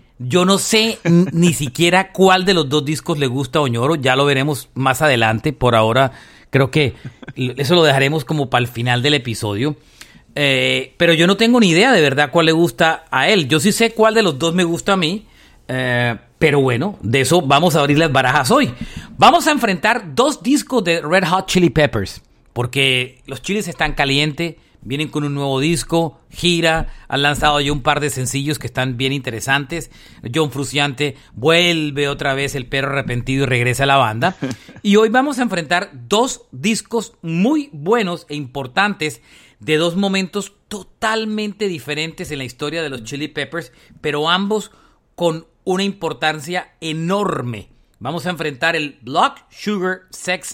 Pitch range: 135-180 Hz